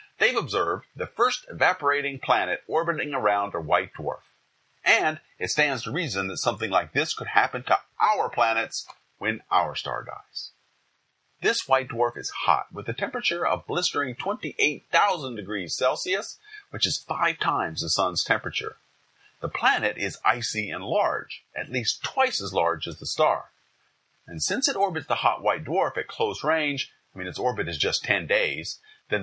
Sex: male